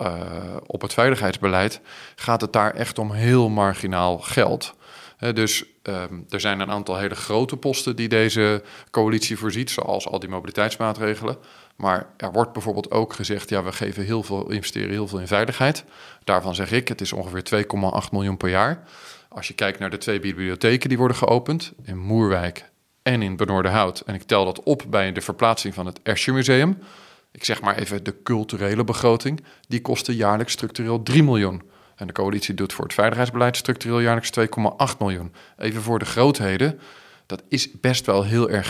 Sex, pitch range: male, 95-115 Hz